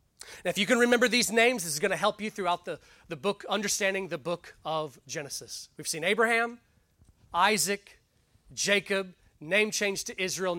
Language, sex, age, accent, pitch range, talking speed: English, male, 30-49, American, 170-215 Hz, 175 wpm